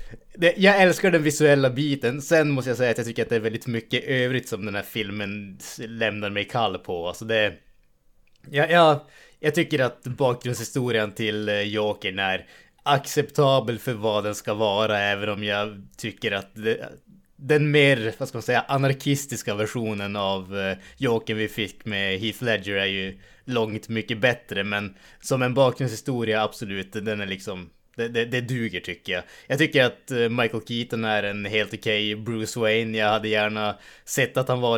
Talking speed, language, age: 165 wpm, Swedish, 20-39